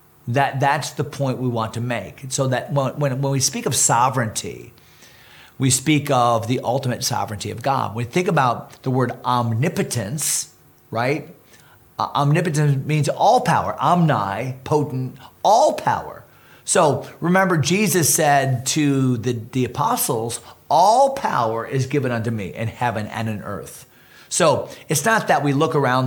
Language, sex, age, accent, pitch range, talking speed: English, male, 40-59, American, 115-140 Hz, 155 wpm